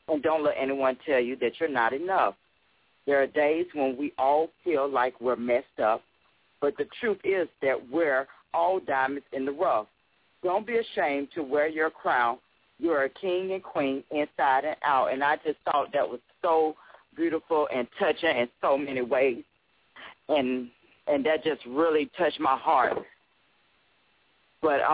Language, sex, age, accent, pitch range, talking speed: English, female, 40-59, American, 130-175 Hz, 170 wpm